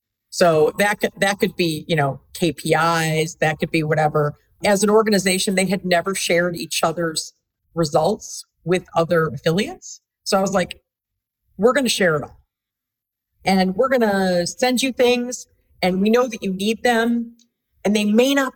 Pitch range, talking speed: 170-220 Hz, 170 wpm